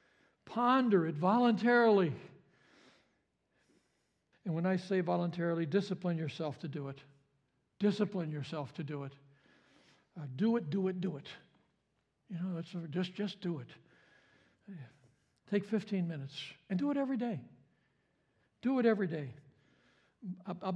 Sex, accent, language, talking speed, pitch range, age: male, American, English, 130 wpm, 145-195 Hz, 60-79